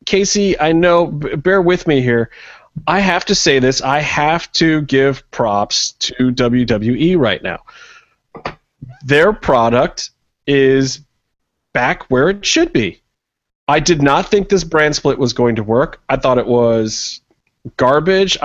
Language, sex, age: English, male, 30-49